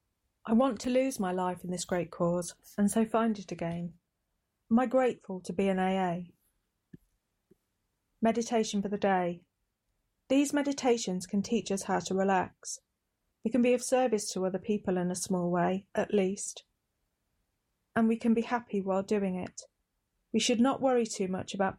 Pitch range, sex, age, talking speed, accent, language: 180-215 Hz, female, 30-49, 175 wpm, British, English